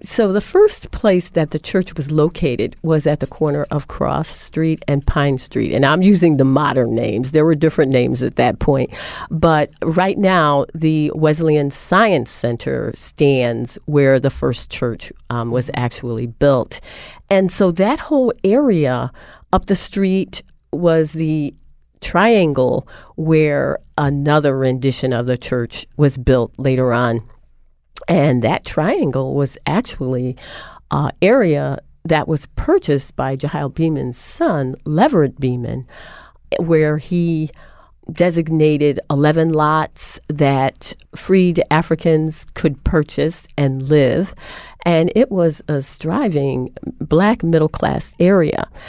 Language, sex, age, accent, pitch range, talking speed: English, female, 40-59, American, 135-170 Hz, 130 wpm